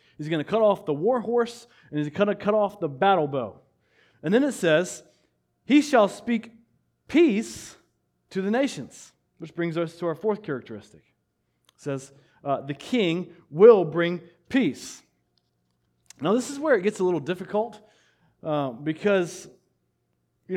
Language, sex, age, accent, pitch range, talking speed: English, male, 30-49, American, 150-210 Hz, 160 wpm